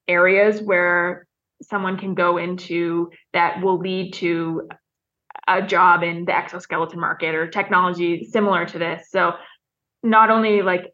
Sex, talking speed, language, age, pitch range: female, 135 wpm, English, 20-39, 175-200 Hz